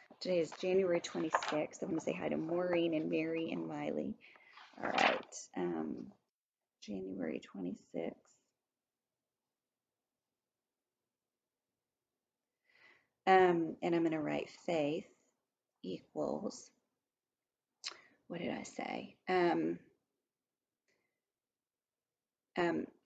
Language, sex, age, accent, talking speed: English, female, 30-49, American, 90 wpm